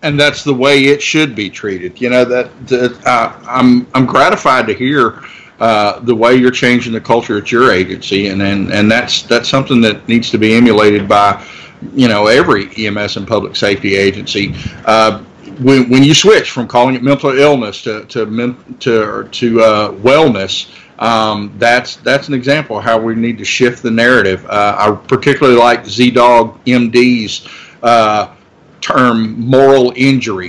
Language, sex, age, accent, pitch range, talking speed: English, male, 50-69, American, 110-130 Hz, 175 wpm